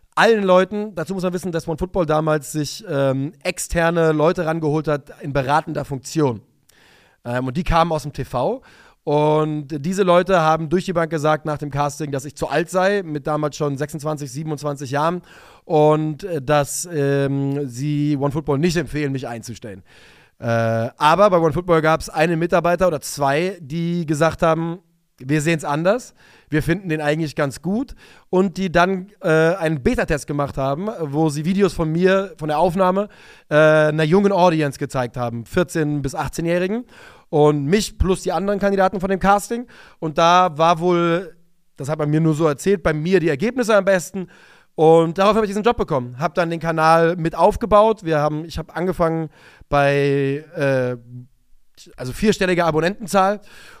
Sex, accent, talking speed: male, German, 170 wpm